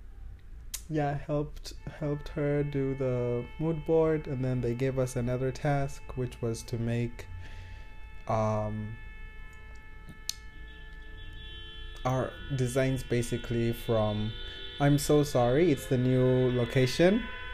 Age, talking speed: 20-39, 105 wpm